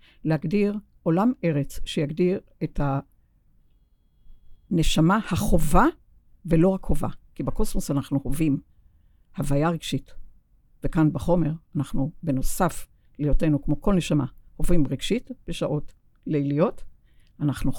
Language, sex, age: Hebrew, female, 60-79